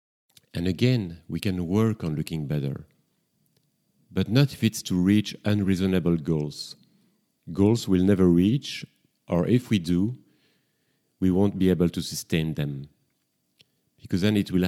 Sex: male